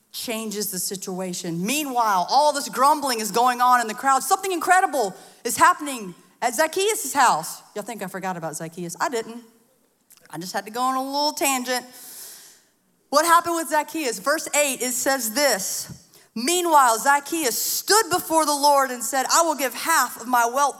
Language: English